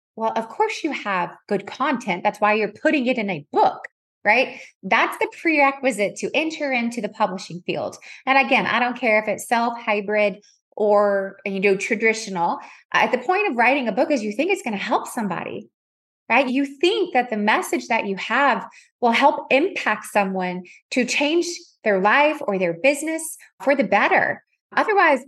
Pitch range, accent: 205-285 Hz, American